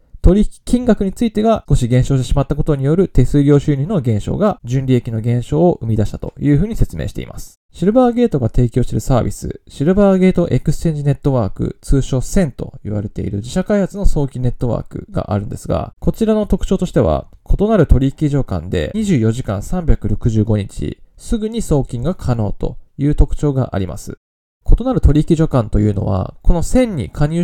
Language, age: Japanese, 20-39